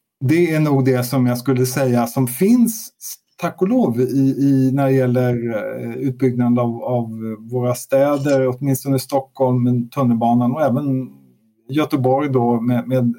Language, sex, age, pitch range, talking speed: Swedish, male, 50-69, 120-140 Hz, 140 wpm